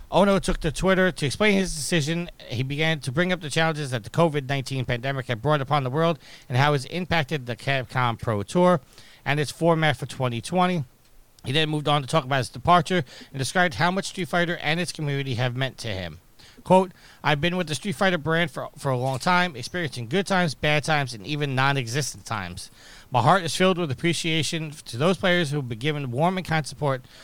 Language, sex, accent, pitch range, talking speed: English, male, American, 125-165 Hz, 215 wpm